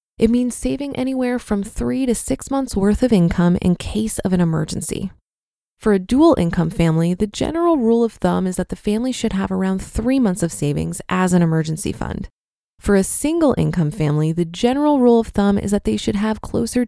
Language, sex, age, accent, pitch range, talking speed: English, female, 20-39, American, 180-240 Hz, 200 wpm